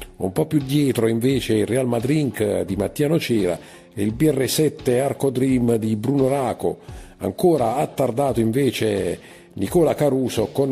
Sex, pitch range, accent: male, 105-135 Hz, native